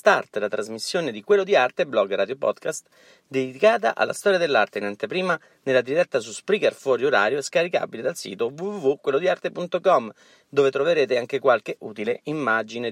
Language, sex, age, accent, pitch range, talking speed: Italian, male, 40-59, native, 125-205 Hz, 150 wpm